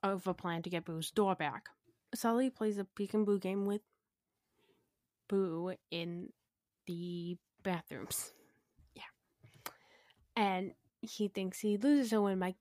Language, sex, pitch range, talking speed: English, female, 175-200 Hz, 140 wpm